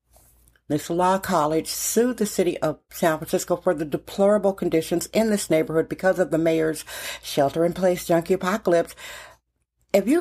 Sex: female